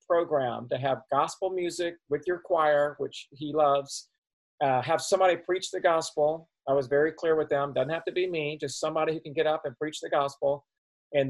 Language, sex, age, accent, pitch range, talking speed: English, male, 40-59, American, 140-175 Hz, 205 wpm